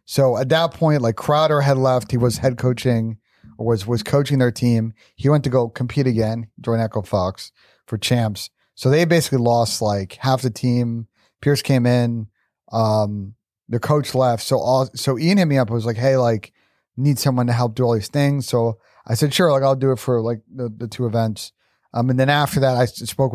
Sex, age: male, 40-59